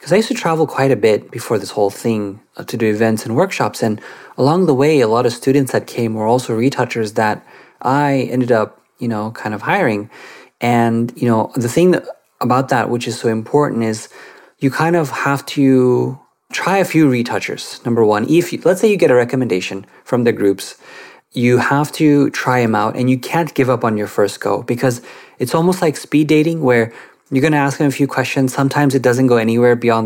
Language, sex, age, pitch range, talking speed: English, male, 30-49, 115-140 Hz, 220 wpm